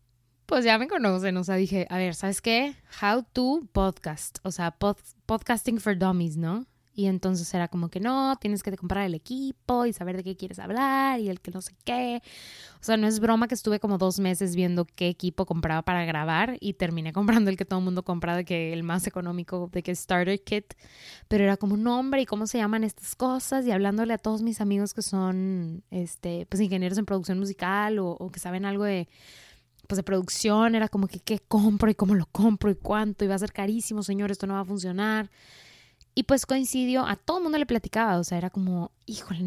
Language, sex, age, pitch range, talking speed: Spanish, female, 20-39, 175-215 Hz, 225 wpm